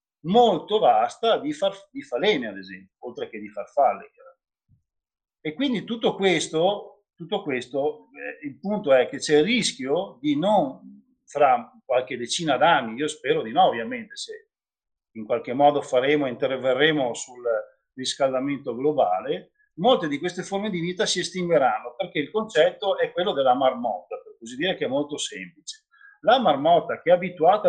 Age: 50-69